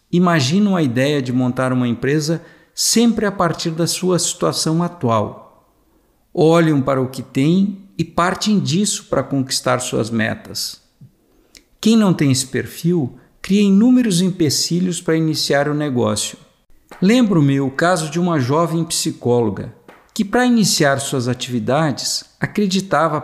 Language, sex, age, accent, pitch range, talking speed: Portuguese, male, 50-69, Brazilian, 135-185 Hz, 130 wpm